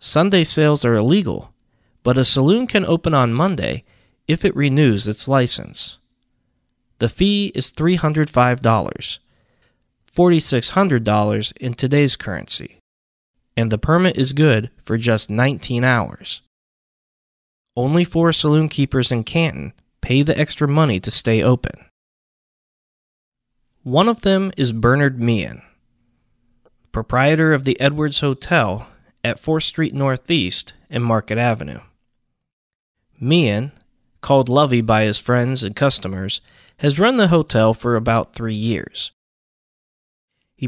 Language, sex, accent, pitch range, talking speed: English, male, American, 115-150 Hz, 120 wpm